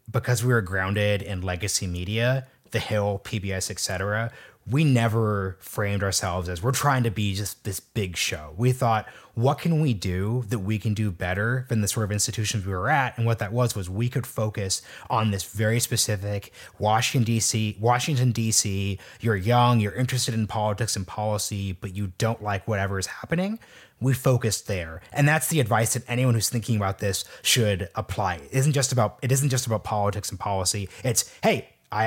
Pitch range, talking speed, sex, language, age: 100-125 Hz, 195 wpm, male, English, 30-49